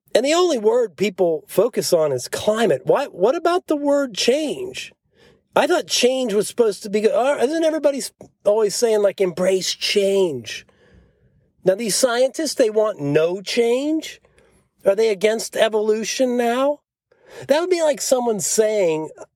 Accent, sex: American, male